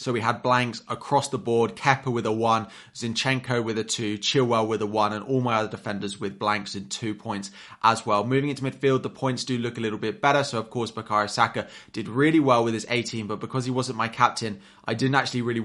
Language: English